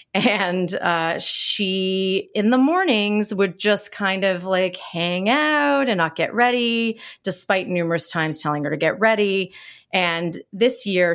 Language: English